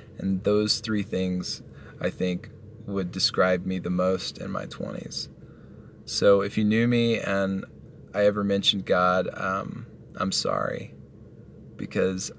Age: 20-39